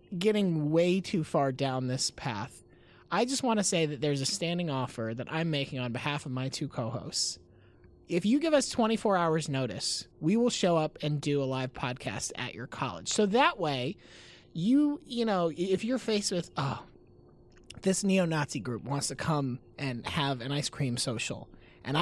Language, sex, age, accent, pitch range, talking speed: English, male, 30-49, American, 135-220 Hz, 190 wpm